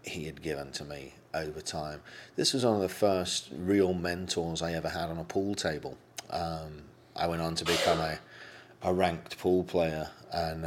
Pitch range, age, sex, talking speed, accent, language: 85-115 Hz, 40-59, male, 190 wpm, British, English